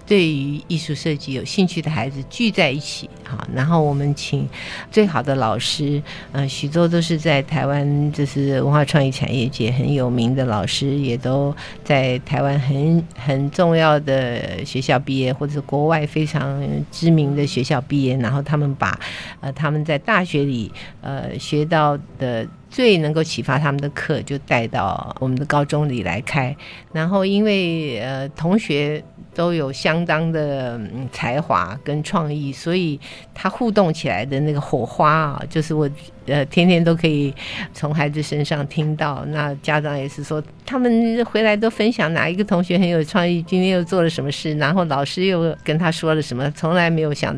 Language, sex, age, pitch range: Chinese, female, 50-69, 135-165 Hz